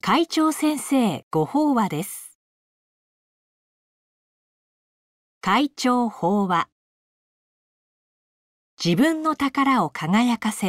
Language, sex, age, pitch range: Japanese, female, 40-59, 170-260 Hz